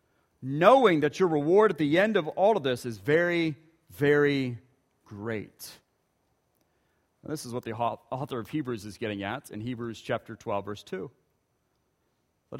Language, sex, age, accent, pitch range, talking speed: English, male, 40-59, American, 120-195 Hz, 150 wpm